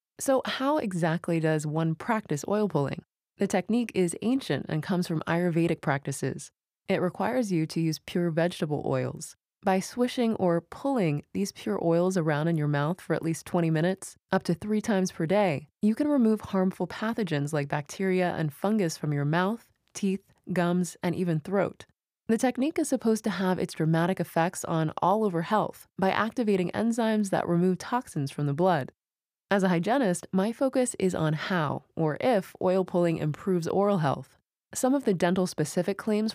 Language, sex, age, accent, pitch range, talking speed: English, female, 20-39, American, 160-205 Hz, 175 wpm